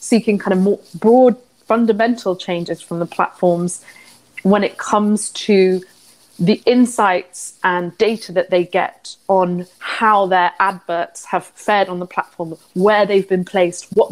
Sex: female